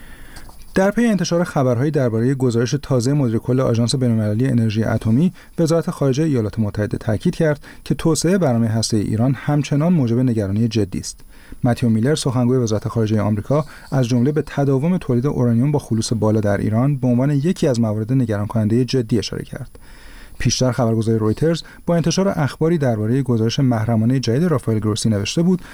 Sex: male